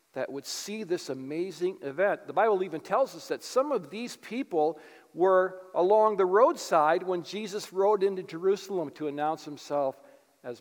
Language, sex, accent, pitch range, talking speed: English, male, American, 170-225 Hz, 165 wpm